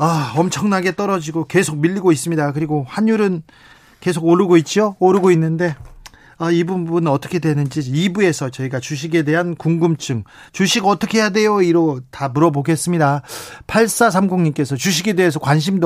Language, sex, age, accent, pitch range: Korean, male, 40-59, native, 140-200 Hz